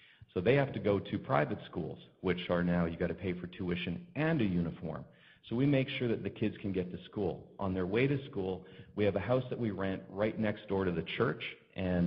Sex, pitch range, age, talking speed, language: male, 95-115 Hz, 40-59, 250 wpm, English